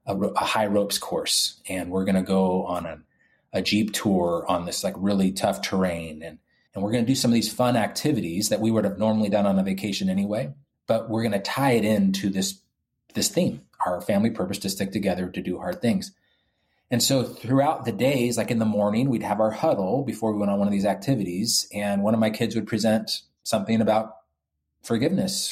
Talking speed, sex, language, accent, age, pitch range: 220 wpm, male, English, American, 30-49, 100-120 Hz